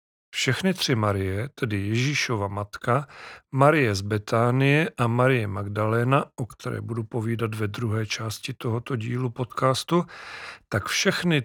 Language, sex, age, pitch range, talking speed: Czech, male, 40-59, 110-140 Hz, 125 wpm